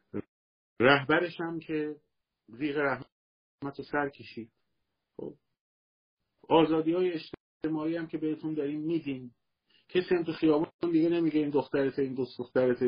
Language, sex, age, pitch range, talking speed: Persian, male, 50-69, 110-155 Hz, 120 wpm